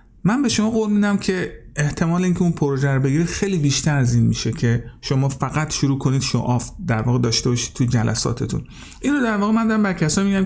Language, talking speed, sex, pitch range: Persian, 210 wpm, male, 125-175 Hz